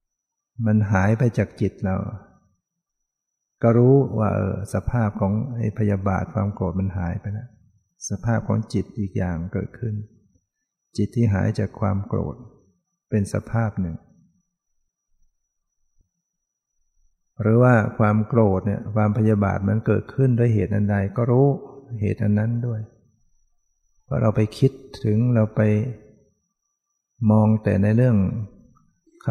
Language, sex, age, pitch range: English, male, 60-79, 100-115 Hz